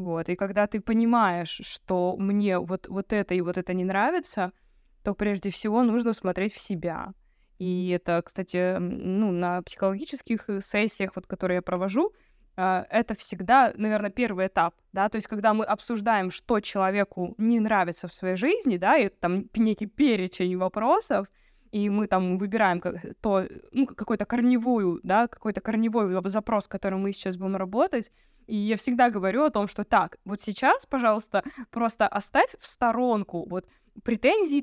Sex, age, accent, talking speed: female, 20-39, native, 155 wpm